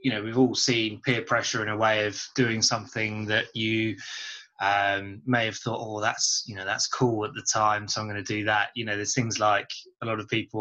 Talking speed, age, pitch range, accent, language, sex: 245 wpm, 20-39, 105-130 Hz, British, English, male